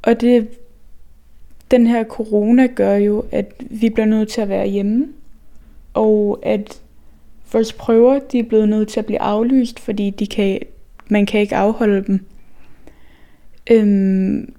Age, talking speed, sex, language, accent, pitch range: 10-29, 150 wpm, female, Danish, native, 200-230 Hz